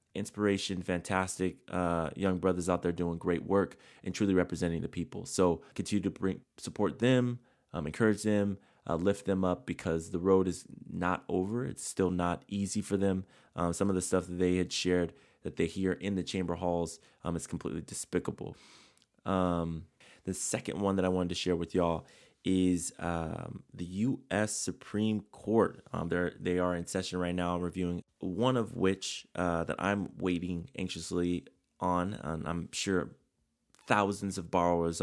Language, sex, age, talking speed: English, male, 20-39, 170 wpm